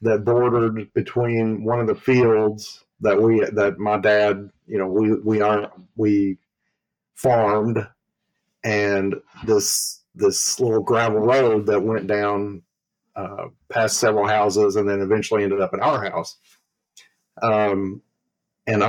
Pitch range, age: 100-120 Hz, 50-69